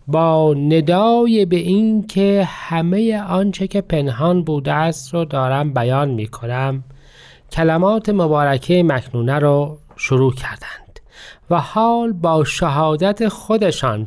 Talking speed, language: 115 wpm, Persian